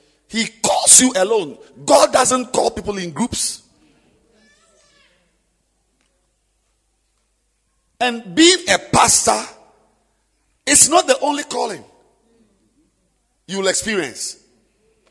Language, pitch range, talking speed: English, 195-295 Hz, 85 wpm